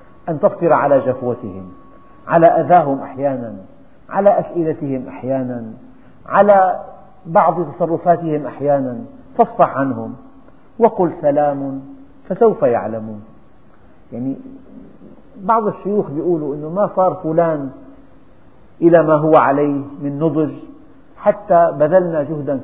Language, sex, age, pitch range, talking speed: Arabic, male, 50-69, 135-190 Hz, 100 wpm